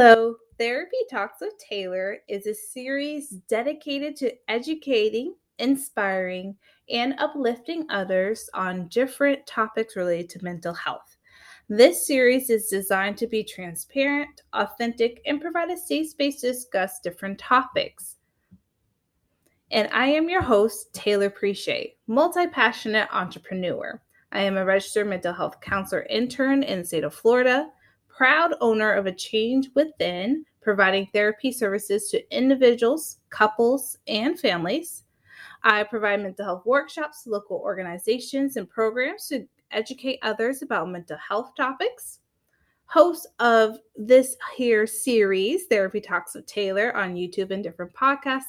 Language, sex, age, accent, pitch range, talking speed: English, female, 20-39, American, 195-270 Hz, 130 wpm